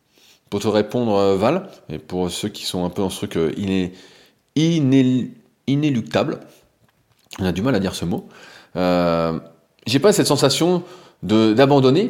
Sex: male